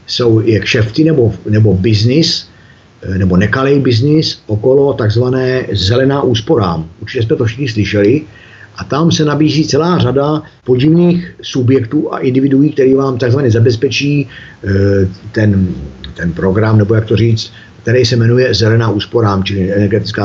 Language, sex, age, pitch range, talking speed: Czech, male, 50-69, 110-145 Hz, 135 wpm